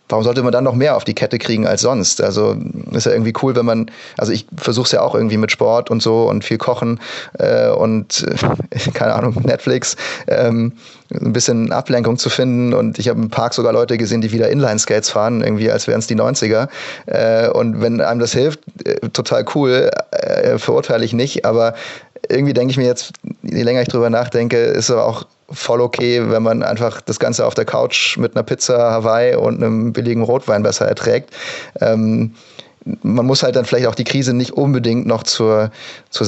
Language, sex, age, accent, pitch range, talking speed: German, male, 30-49, German, 110-125 Hz, 205 wpm